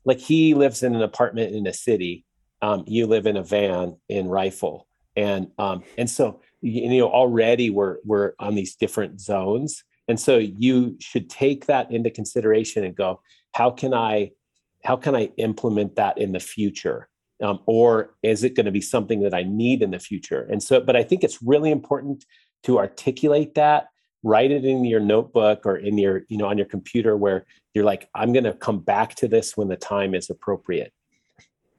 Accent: American